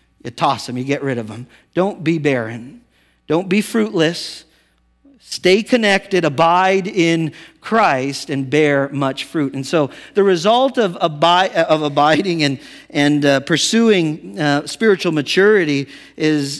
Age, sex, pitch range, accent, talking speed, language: 50-69, male, 150-250 Hz, American, 140 wpm, English